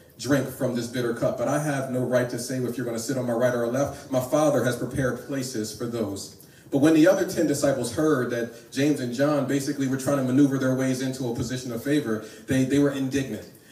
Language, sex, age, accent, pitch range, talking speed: English, male, 40-59, American, 125-160 Hz, 245 wpm